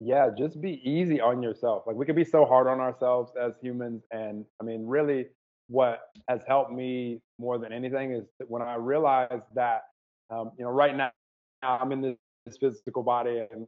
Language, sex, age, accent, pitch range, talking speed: English, male, 20-39, American, 120-135 Hz, 195 wpm